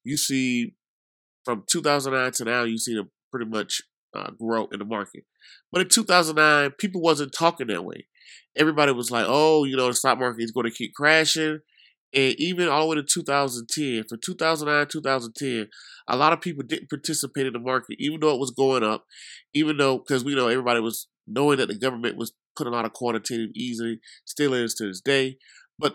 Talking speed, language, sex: 200 wpm, English, male